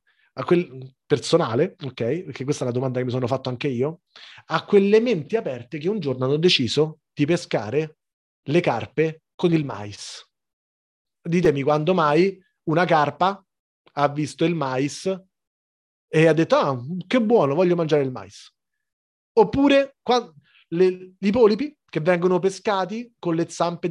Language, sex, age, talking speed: Italian, male, 30-49, 150 wpm